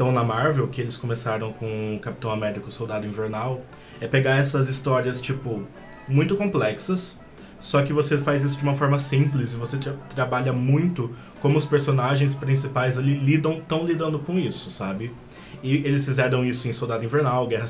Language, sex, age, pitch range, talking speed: Portuguese, male, 20-39, 125-150 Hz, 180 wpm